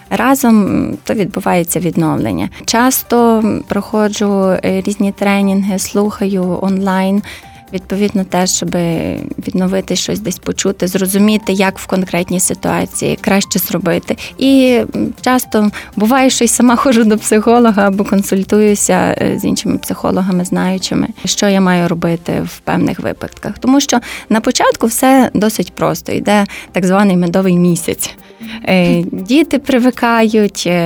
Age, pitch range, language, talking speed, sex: 20-39, 185-225 Hz, Ukrainian, 115 wpm, female